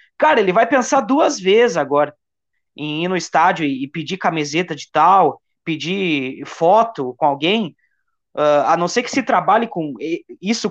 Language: Portuguese